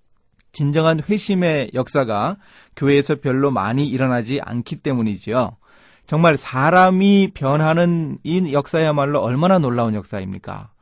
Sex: male